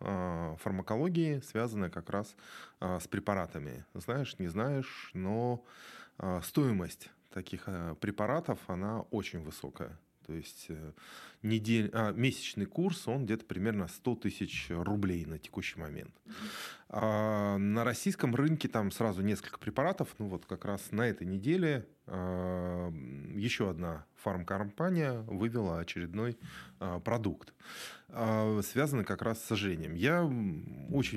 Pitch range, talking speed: 90-120 Hz, 115 wpm